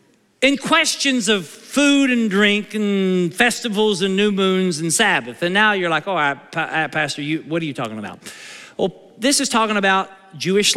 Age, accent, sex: 50-69, American, male